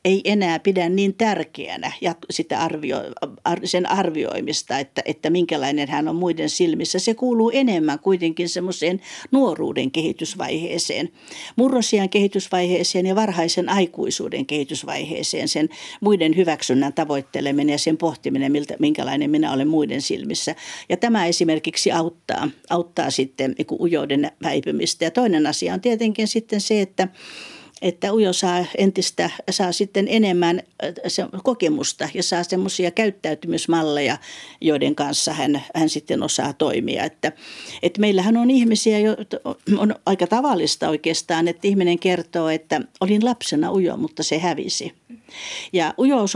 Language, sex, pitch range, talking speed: Finnish, female, 165-215 Hz, 130 wpm